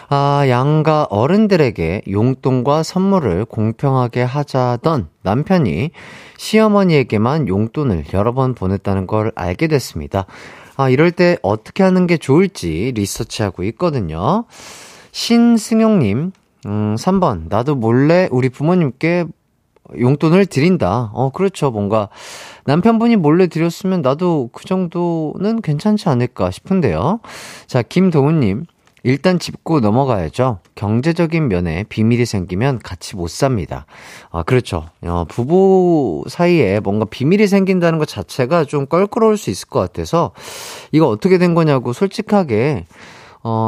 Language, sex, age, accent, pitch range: Korean, male, 40-59, native, 110-180 Hz